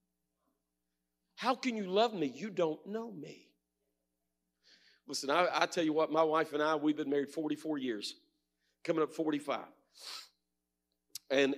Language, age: English, 50-69